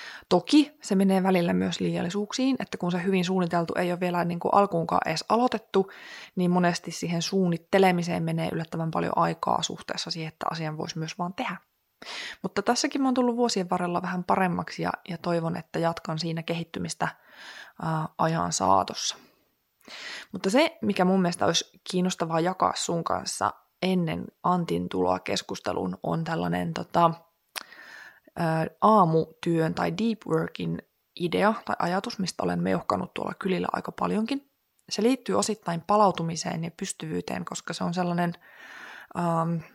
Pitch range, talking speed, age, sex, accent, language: 165-200 Hz, 145 wpm, 20-39, female, native, Finnish